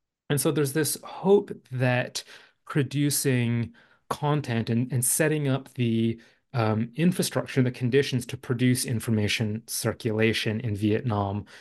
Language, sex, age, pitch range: English, male, 30-49, 110-135 Hz